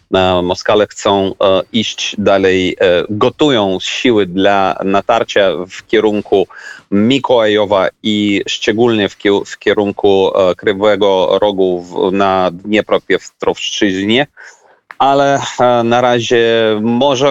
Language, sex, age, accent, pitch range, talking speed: Polish, male, 30-49, native, 100-120 Hz, 90 wpm